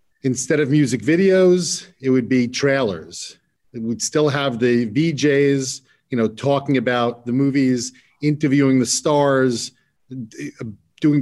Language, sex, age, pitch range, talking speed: English, male, 40-59, 120-150 Hz, 130 wpm